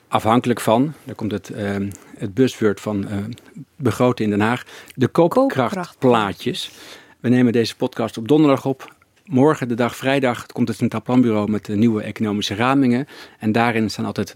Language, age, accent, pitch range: Dutch, 50-69, Dutch, 105-125 Hz